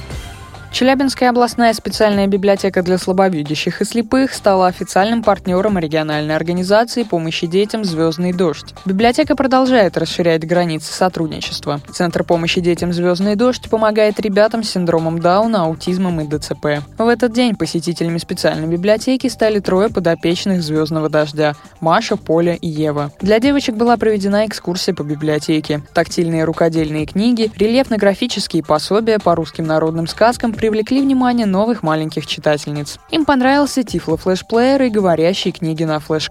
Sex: female